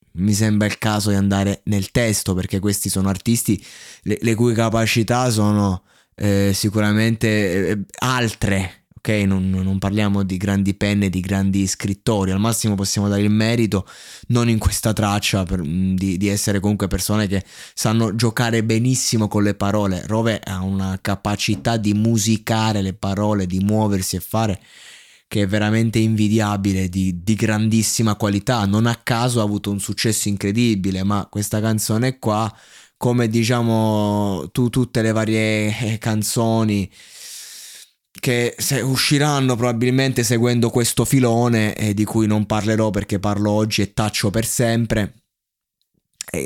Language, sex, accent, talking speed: Italian, male, native, 145 wpm